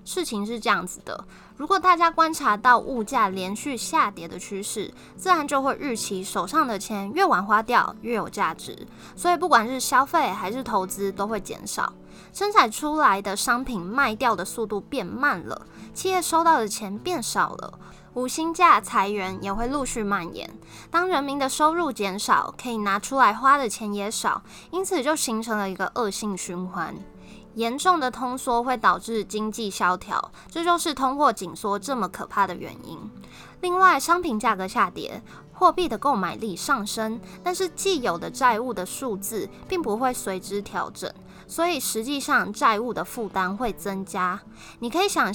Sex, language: female, Chinese